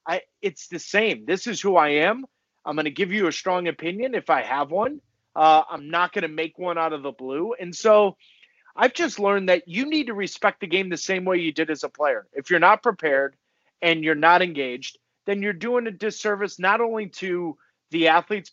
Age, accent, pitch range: 30-49, American, 160-215 Hz